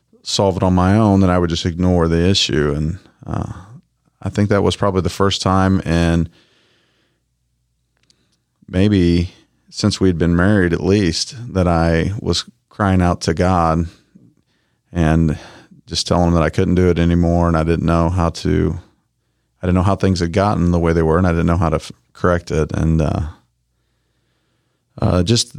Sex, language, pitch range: male, English, 85-100 Hz